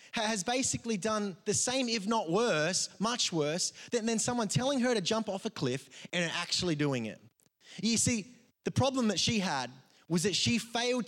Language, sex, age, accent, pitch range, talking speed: English, male, 20-39, Australian, 155-205 Hz, 190 wpm